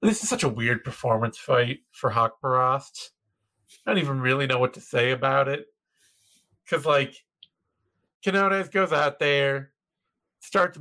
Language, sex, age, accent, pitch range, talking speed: English, male, 40-59, American, 145-210 Hz, 145 wpm